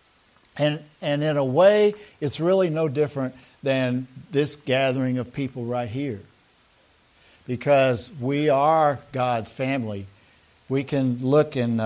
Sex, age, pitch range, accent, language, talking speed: male, 60-79, 110-145 Hz, American, English, 130 wpm